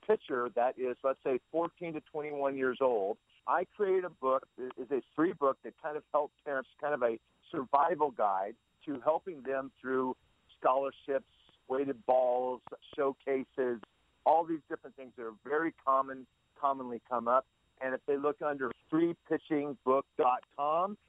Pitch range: 125-155 Hz